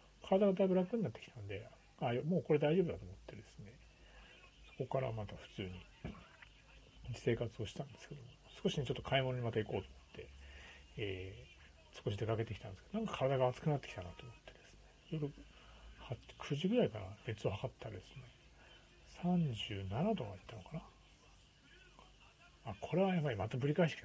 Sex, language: male, Japanese